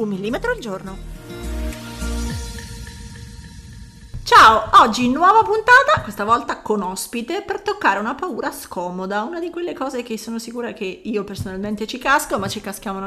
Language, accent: Italian, native